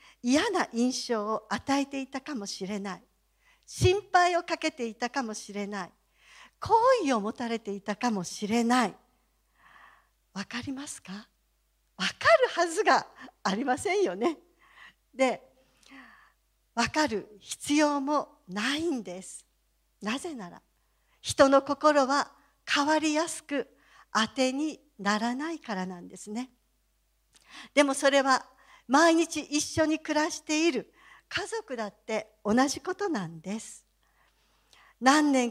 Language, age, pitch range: Japanese, 50-69, 230-310 Hz